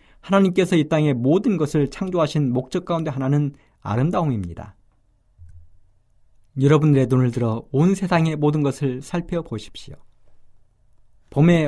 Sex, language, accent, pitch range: male, Korean, native, 110-170 Hz